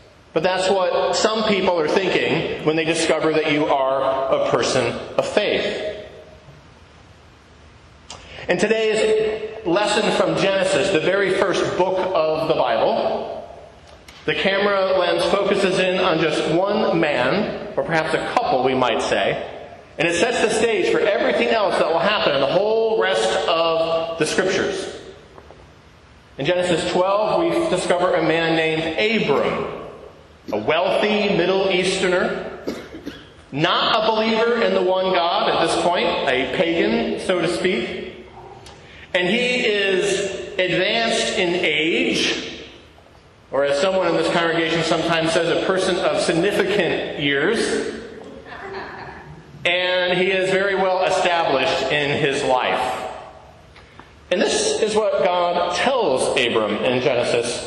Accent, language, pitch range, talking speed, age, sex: American, English, 170-200 Hz, 135 wpm, 40-59, male